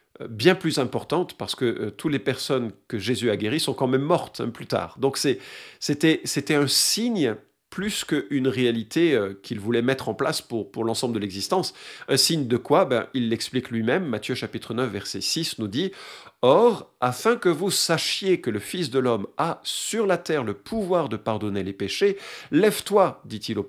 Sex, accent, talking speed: male, French, 200 wpm